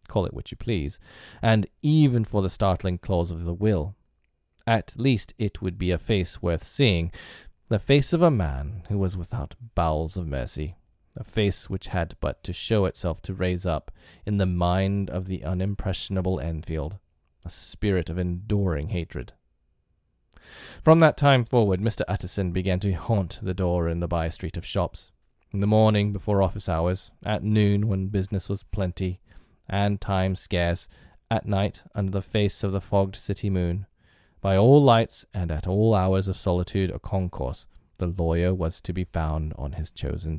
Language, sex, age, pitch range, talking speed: English, male, 30-49, 85-105 Hz, 175 wpm